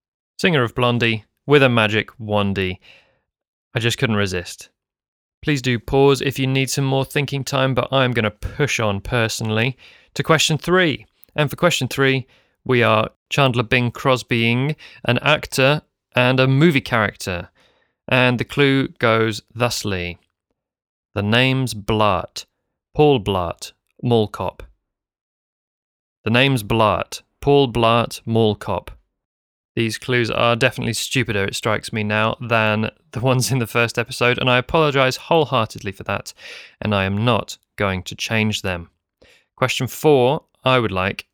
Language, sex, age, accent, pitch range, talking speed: English, male, 30-49, British, 105-130 Hz, 145 wpm